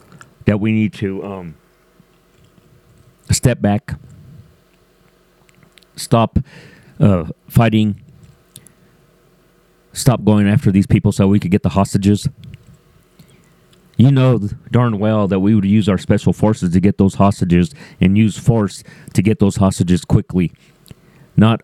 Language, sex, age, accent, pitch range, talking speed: English, male, 40-59, American, 100-120 Hz, 125 wpm